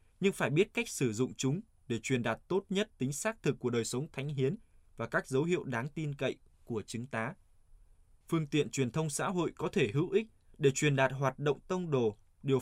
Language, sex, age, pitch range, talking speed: Vietnamese, male, 20-39, 120-150 Hz, 230 wpm